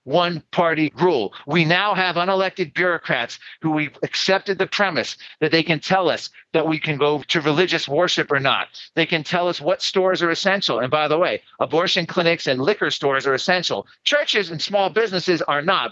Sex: male